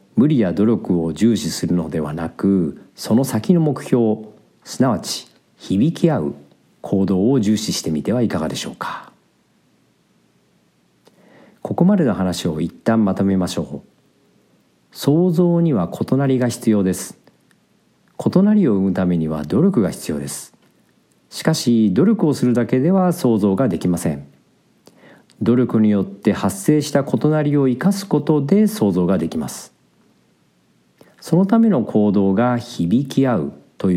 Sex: male